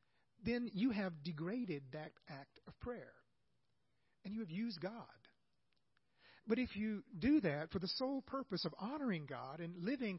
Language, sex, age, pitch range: English, male, 40-59, 160-220 Hz